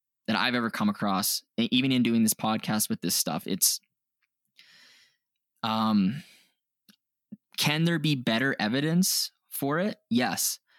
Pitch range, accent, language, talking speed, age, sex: 115-170 Hz, American, English, 130 wpm, 20-39, male